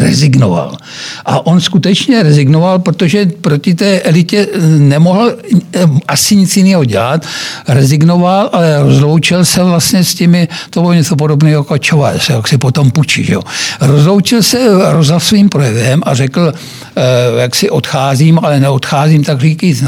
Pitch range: 140-180 Hz